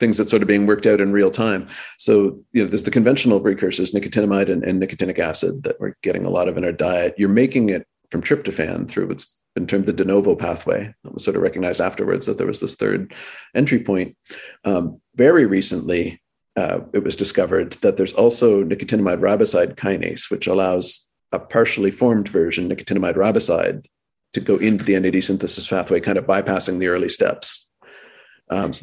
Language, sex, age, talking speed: English, male, 40-59, 195 wpm